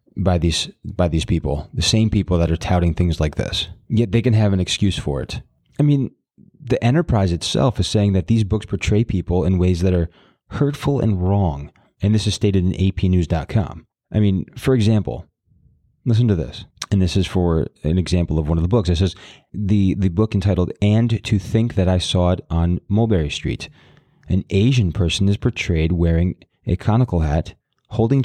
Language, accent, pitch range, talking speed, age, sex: English, American, 90-115 Hz, 195 wpm, 30-49, male